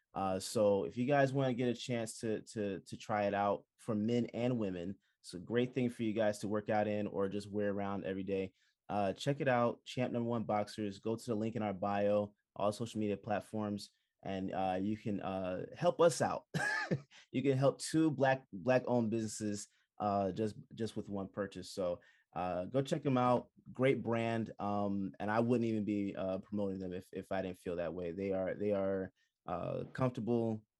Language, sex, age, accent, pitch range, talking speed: English, male, 20-39, American, 100-120 Hz, 210 wpm